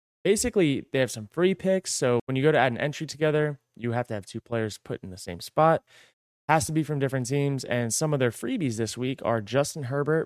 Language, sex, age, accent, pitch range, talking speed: English, male, 20-39, American, 115-150 Hz, 245 wpm